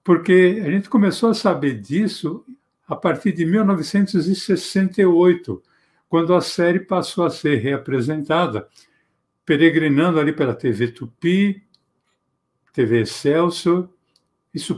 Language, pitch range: Portuguese, 135-180 Hz